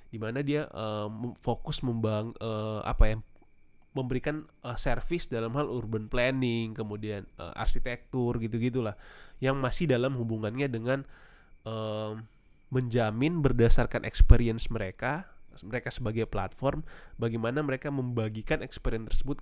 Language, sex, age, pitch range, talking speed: Indonesian, male, 20-39, 110-130 Hz, 115 wpm